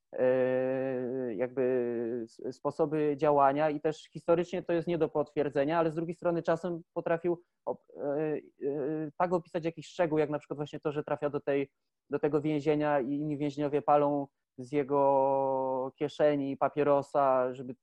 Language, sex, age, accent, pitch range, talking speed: Polish, male, 20-39, native, 140-165 Hz, 155 wpm